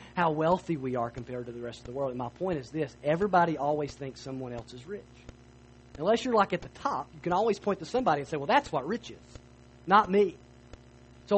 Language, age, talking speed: English, 40-59, 235 wpm